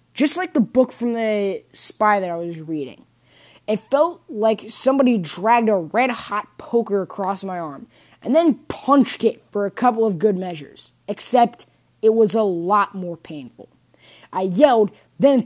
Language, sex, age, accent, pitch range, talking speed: English, female, 20-39, American, 190-255 Hz, 165 wpm